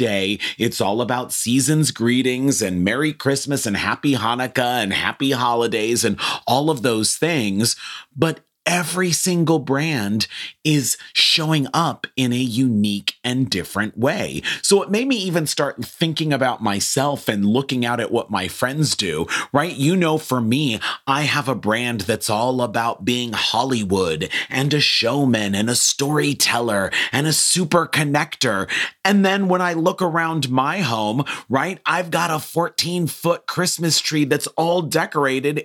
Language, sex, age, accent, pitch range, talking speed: English, male, 30-49, American, 120-155 Hz, 155 wpm